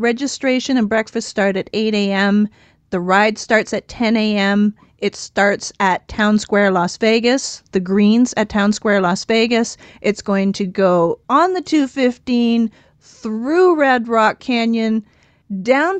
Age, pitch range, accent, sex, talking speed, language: 40-59, 195-230 Hz, American, female, 145 wpm, English